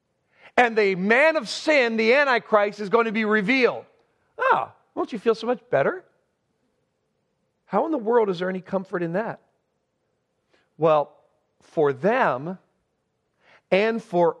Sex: male